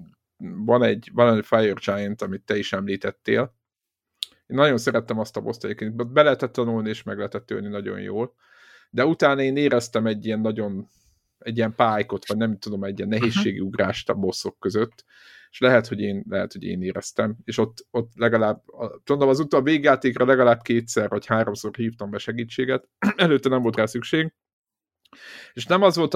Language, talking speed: Hungarian, 175 wpm